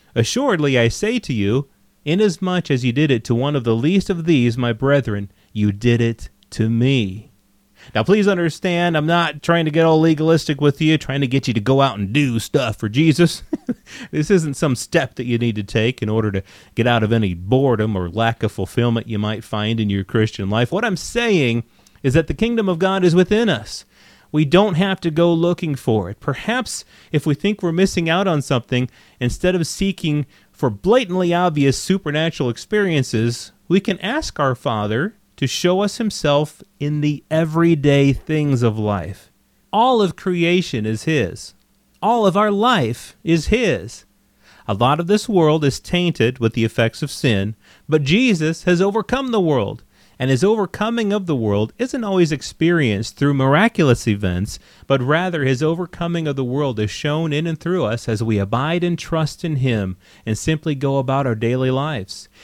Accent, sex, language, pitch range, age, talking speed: American, male, English, 115-170 Hz, 30-49, 190 wpm